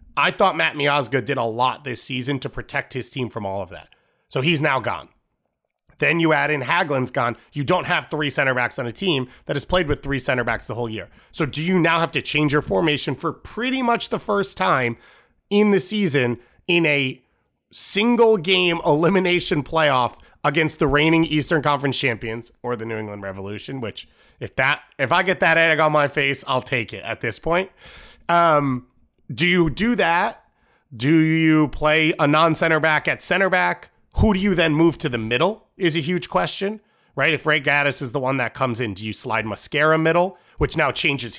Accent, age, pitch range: American, 30-49, 130-170 Hz